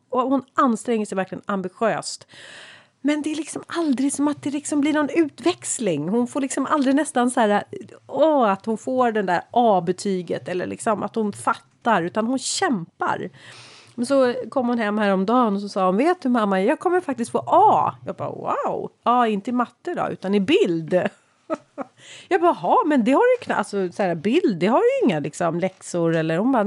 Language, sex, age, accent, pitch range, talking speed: Swedish, female, 30-49, native, 195-280 Hz, 195 wpm